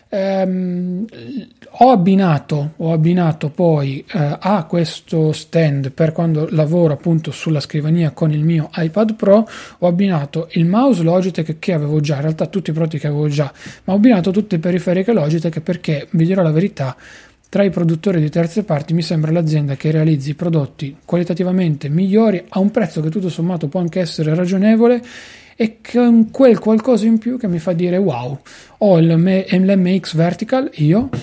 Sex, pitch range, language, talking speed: male, 150-185 Hz, Italian, 170 wpm